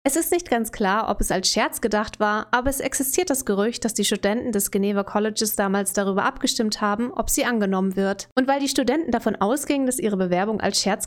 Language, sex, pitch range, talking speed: German, female, 200-250 Hz, 220 wpm